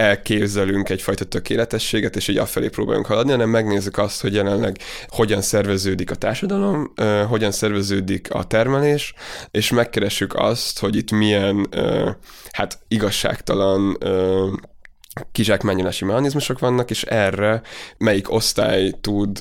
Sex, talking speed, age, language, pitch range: male, 125 wpm, 20-39, Hungarian, 100-115 Hz